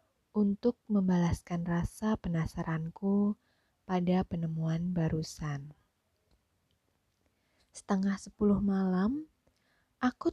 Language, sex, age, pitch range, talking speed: Indonesian, female, 20-39, 160-195 Hz, 65 wpm